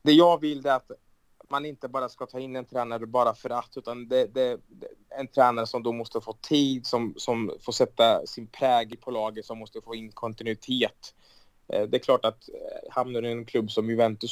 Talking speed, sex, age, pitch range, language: 215 wpm, male, 20-39, 105-125 Hz, Swedish